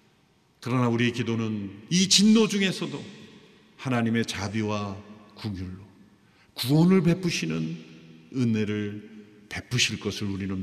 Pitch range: 110-155 Hz